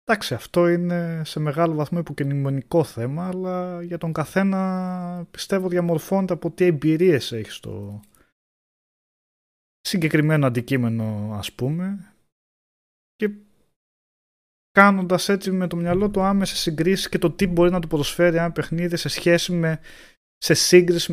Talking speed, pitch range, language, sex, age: 130 wpm, 115-165 Hz, Greek, male, 20-39